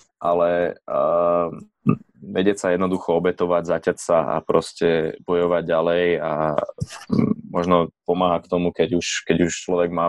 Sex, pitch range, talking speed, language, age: male, 85-90 Hz, 135 wpm, Slovak, 20-39